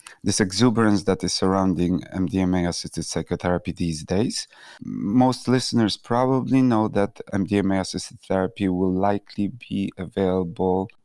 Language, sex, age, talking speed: English, male, 30-49, 110 wpm